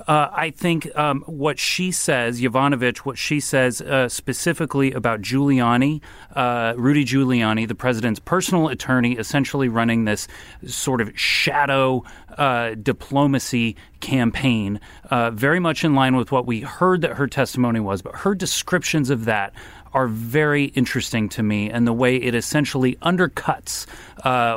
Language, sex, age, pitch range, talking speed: English, male, 30-49, 115-145 Hz, 150 wpm